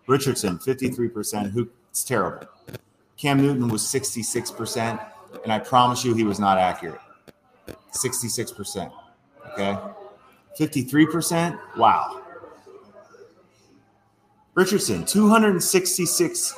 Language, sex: English, male